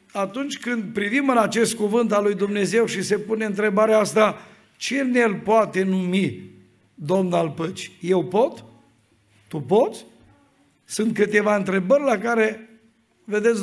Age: 50-69